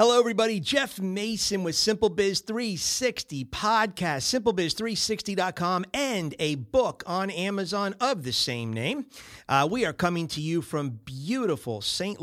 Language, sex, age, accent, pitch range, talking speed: English, male, 40-59, American, 130-190 Hz, 135 wpm